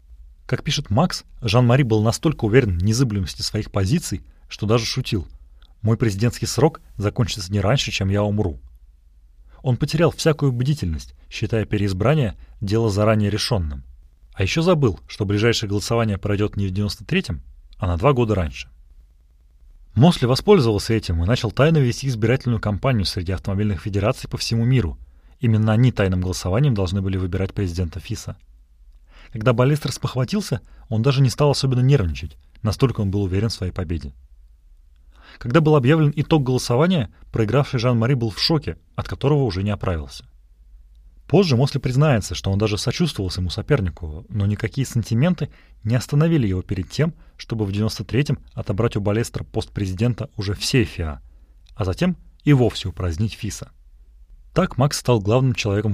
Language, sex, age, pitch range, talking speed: Russian, male, 30-49, 85-125 Hz, 155 wpm